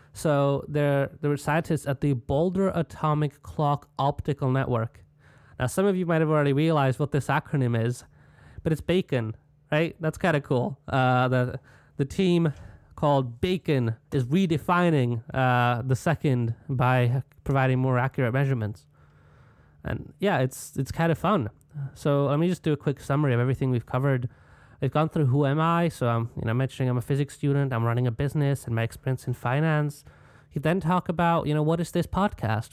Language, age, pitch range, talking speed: English, 20-39, 130-150 Hz, 185 wpm